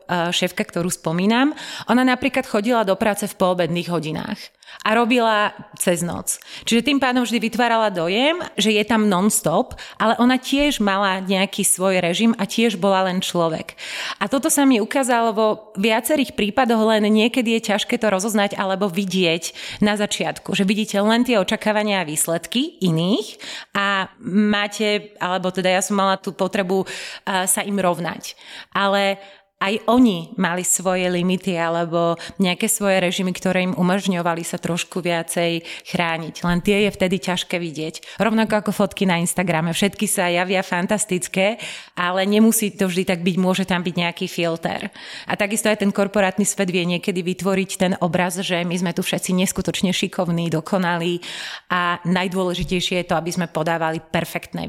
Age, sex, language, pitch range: 30-49, female, Slovak, 180-215 Hz